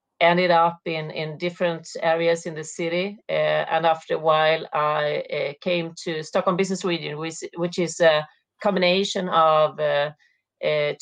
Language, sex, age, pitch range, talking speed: English, female, 40-59, 150-175 Hz, 160 wpm